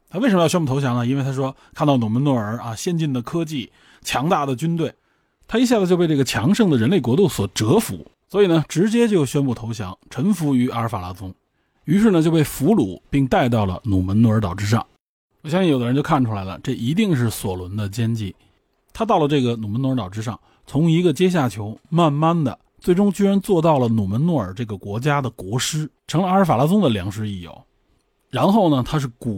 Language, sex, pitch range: Chinese, male, 110-155 Hz